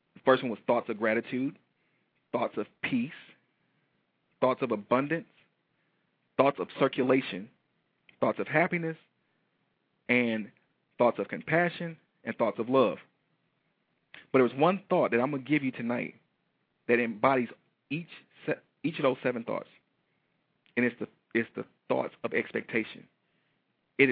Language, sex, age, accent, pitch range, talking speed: English, male, 40-59, American, 120-155 Hz, 140 wpm